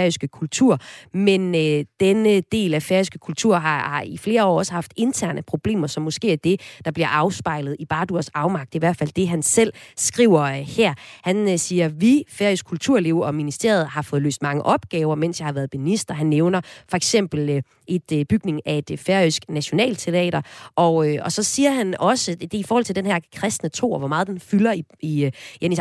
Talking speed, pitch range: 205 wpm, 155-210 Hz